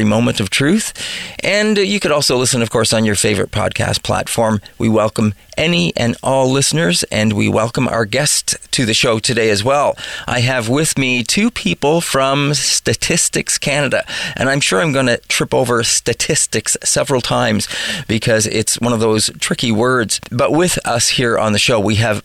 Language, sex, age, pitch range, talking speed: English, male, 40-59, 115-150 Hz, 185 wpm